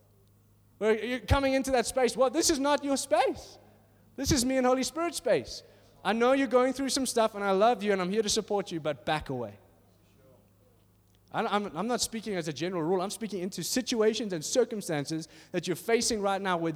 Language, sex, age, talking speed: English, male, 20-39, 210 wpm